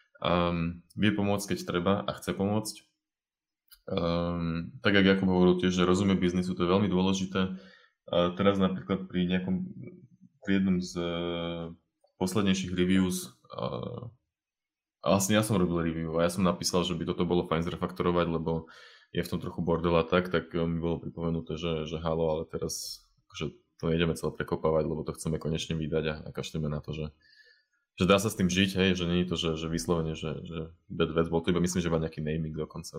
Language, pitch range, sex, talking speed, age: Slovak, 80-95 Hz, male, 195 wpm, 20-39